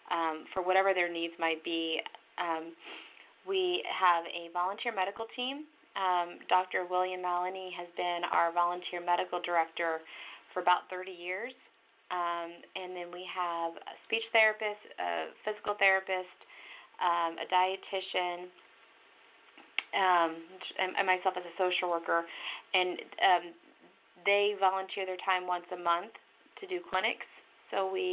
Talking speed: 135 wpm